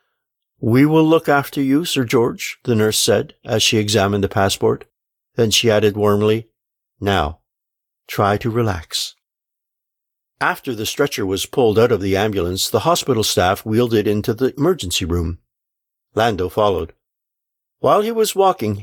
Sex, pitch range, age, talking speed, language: male, 100-140 Hz, 50-69, 150 wpm, English